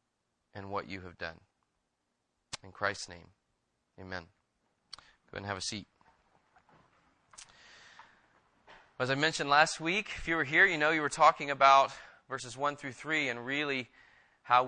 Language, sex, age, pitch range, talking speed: English, male, 30-49, 120-150 Hz, 145 wpm